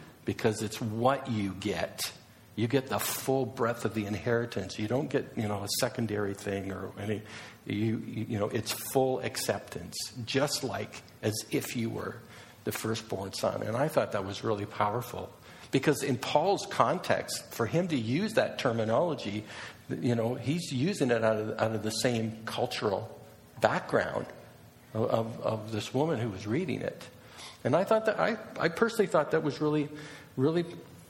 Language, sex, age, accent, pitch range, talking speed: English, male, 60-79, American, 110-145 Hz, 170 wpm